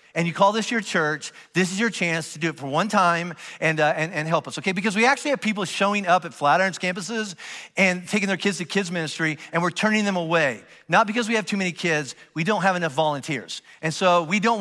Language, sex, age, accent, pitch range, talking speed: English, male, 50-69, American, 170-210 Hz, 250 wpm